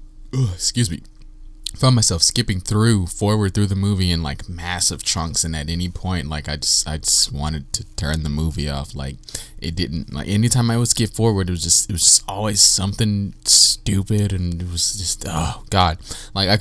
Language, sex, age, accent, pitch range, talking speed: English, male, 20-39, American, 85-105 Hz, 210 wpm